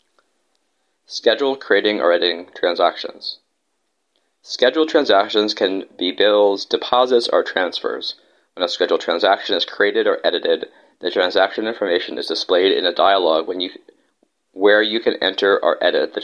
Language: English